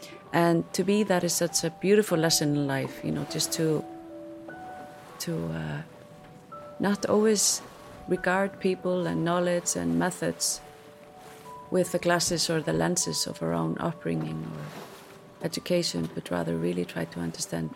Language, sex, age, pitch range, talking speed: English, female, 30-49, 140-175 Hz, 145 wpm